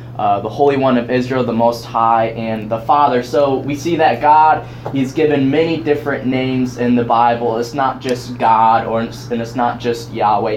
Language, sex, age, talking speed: English, male, 10-29, 195 wpm